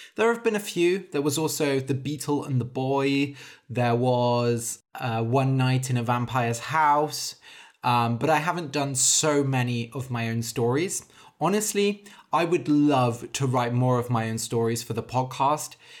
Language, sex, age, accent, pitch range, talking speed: English, male, 20-39, British, 115-150 Hz, 175 wpm